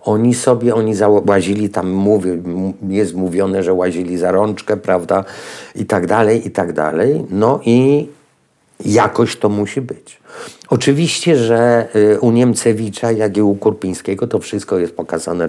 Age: 50-69